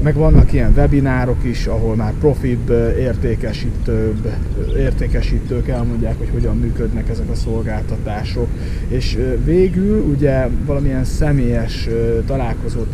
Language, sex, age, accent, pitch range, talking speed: English, male, 30-49, Finnish, 105-125 Hz, 105 wpm